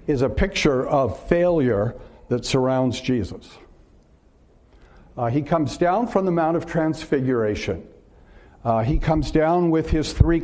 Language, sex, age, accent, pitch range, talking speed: English, male, 60-79, American, 125-170 Hz, 140 wpm